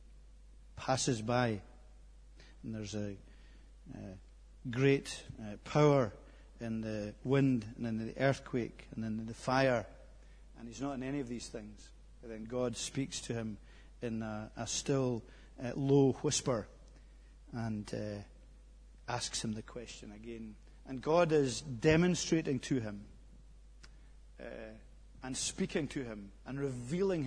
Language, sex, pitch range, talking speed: English, male, 110-150 Hz, 135 wpm